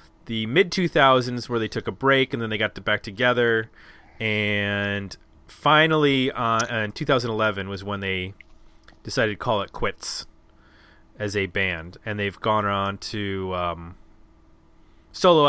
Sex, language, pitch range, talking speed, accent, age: male, English, 90-125 Hz, 150 wpm, American, 20-39